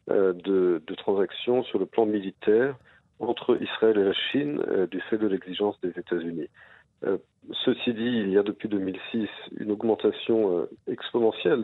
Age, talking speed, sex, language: 50-69, 160 wpm, male, French